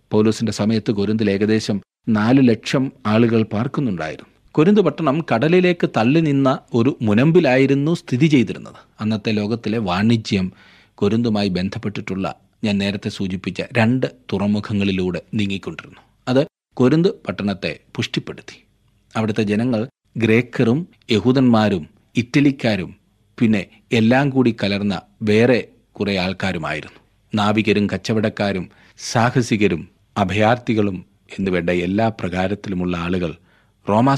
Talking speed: 90 wpm